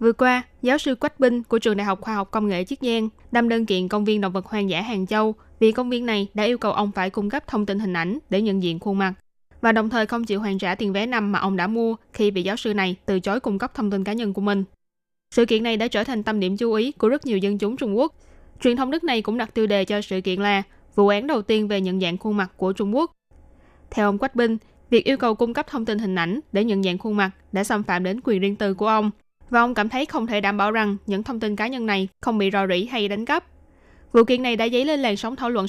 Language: Vietnamese